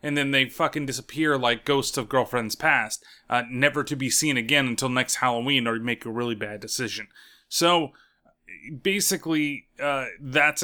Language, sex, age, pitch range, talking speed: English, male, 30-49, 120-150 Hz, 165 wpm